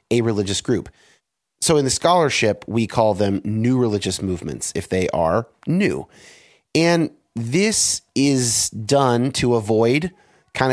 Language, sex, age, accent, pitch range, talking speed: English, male, 30-49, American, 105-140 Hz, 135 wpm